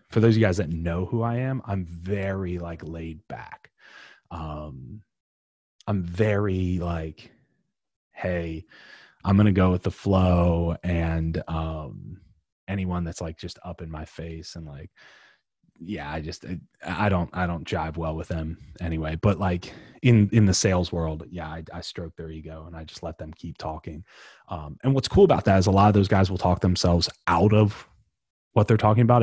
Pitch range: 85-110 Hz